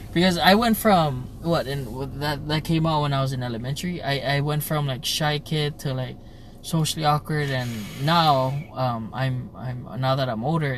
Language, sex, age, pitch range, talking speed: English, male, 20-39, 125-150 Hz, 195 wpm